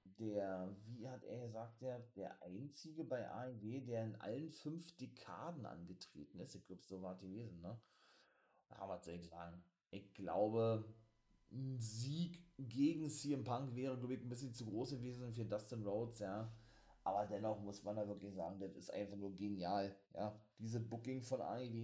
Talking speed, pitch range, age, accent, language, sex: 170 wpm, 105-130 Hz, 30-49, German, German, male